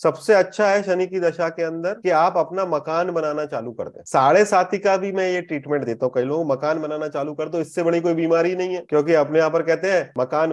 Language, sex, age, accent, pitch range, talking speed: Hindi, male, 30-49, native, 125-165 Hz, 260 wpm